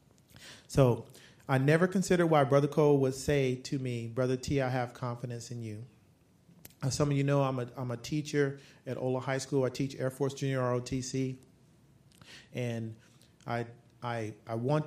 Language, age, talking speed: English, 40-59, 175 wpm